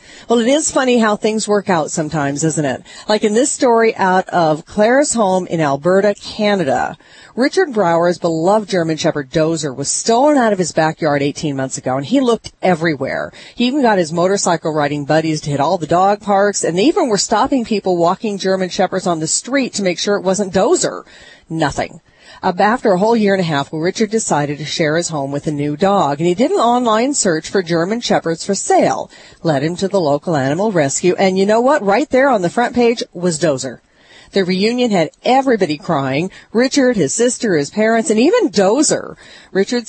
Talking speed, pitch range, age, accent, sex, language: 200 wpm, 160-225 Hz, 40-59, American, female, English